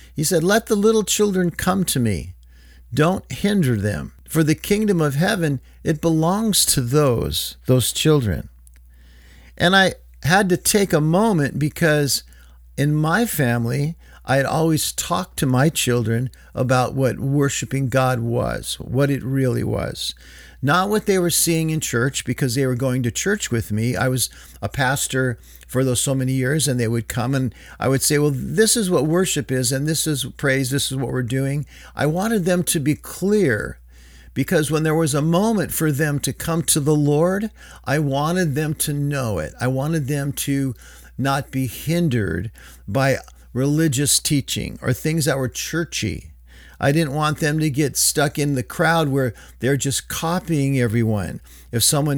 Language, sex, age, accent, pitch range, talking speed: Finnish, male, 50-69, American, 120-155 Hz, 175 wpm